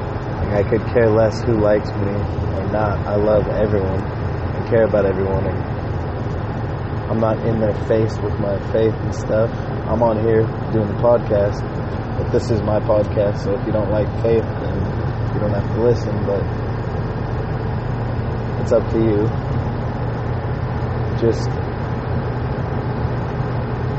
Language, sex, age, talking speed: English, male, 30-49, 140 wpm